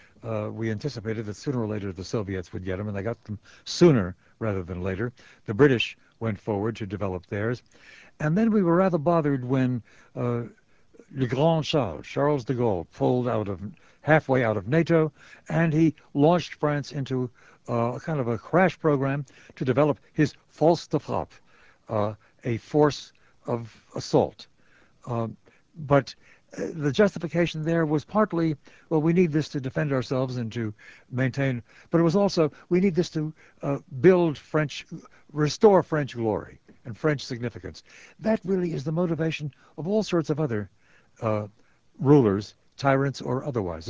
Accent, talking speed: American, 165 wpm